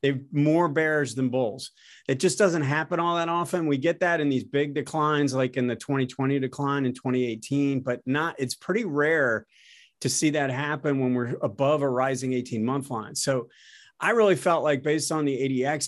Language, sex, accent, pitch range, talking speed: English, male, American, 135-160 Hz, 200 wpm